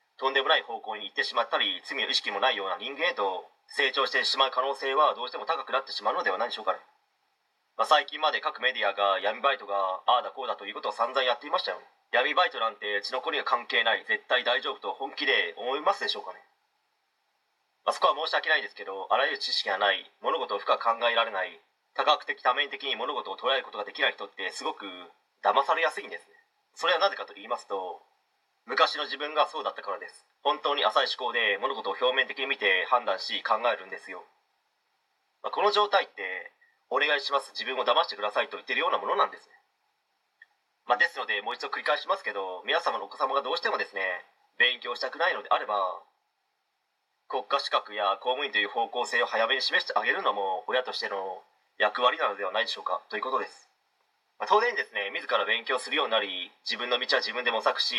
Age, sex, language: 30-49, male, Japanese